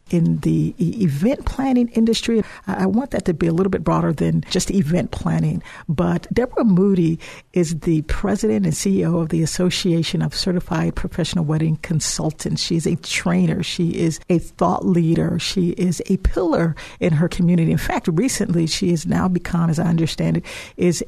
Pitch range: 165-185 Hz